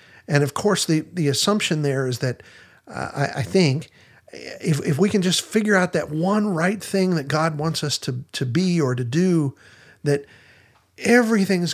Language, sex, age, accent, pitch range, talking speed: English, male, 50-69, American, 125-190 Hz, 185 wpm